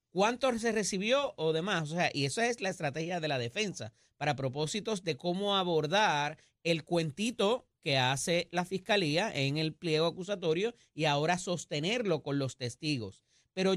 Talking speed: 160 wpm